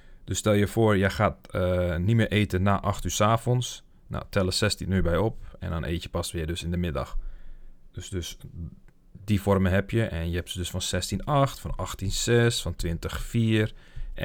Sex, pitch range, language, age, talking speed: male, 90-105 Hz, Dutch, 40-59, 205 wpm